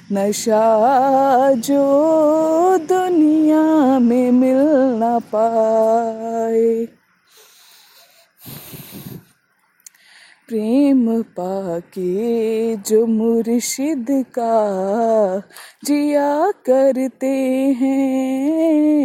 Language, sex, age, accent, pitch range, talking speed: Hindi, female, 20-39, native, 235-295 Hz, 45 wpm